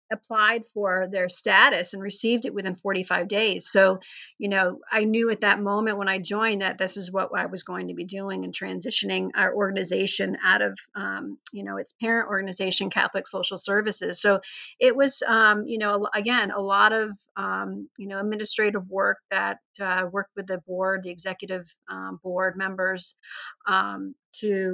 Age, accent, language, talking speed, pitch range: 40-59, American, English, 180 wpm, 185-215 Hz